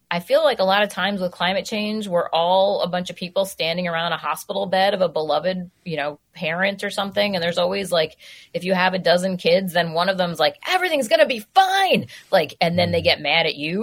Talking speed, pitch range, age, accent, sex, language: 245 wpm, 170-200 Hz, 30-49, American, female, English